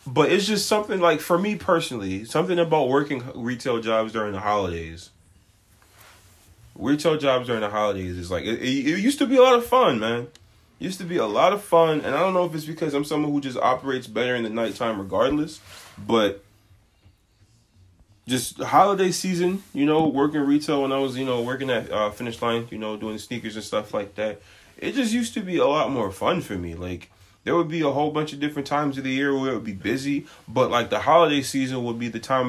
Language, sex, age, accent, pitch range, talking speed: English, male, 20-39, American, 105-145 Hz, 225 wpm